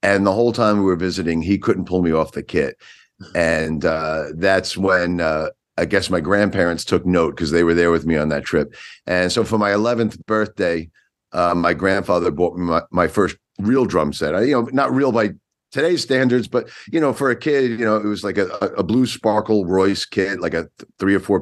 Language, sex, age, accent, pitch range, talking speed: English, male, 50-69, American, 90-115 Hz, 225 wpm